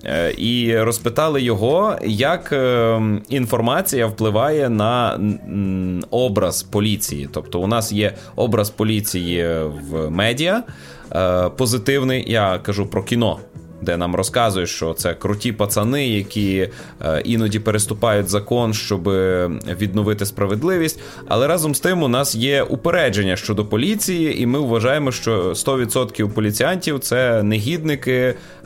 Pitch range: 100-130 Hz